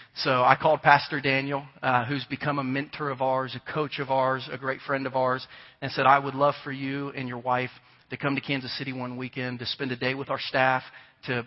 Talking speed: 240 wpm